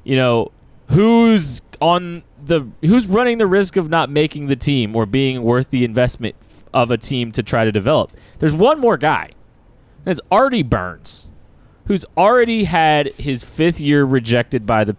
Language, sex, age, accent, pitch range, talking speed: English, male, 20-39, American, 115-145 Hz, 170 wpm